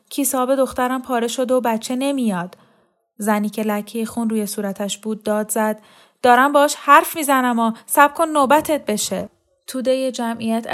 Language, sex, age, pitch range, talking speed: Persian, female, 10-29, 195-225 Hz, 145 wpm